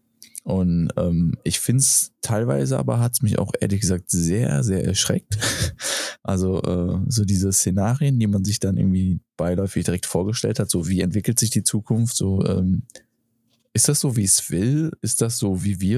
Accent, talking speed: German, 185 wpm